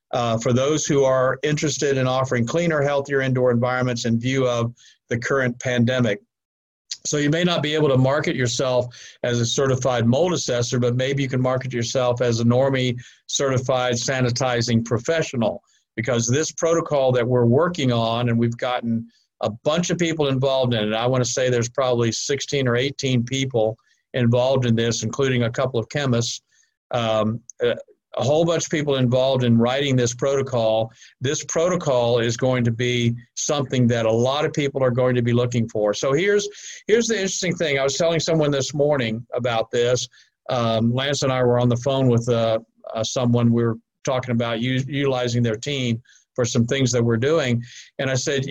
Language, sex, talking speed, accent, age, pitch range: English, male, 185 wpm, American, 50-69, 120-140 Hz